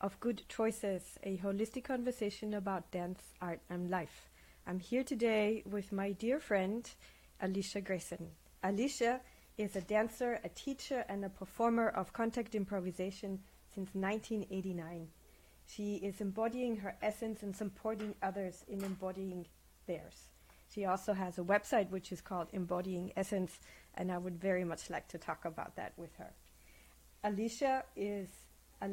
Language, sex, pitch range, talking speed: English, female, 180-215 Hz, 145 wpm